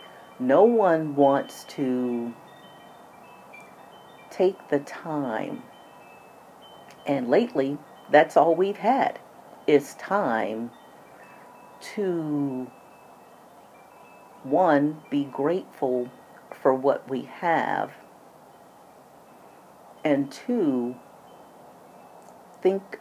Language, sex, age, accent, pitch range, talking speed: English, female, 50-69, American, 130-150 Hz, 70 wpm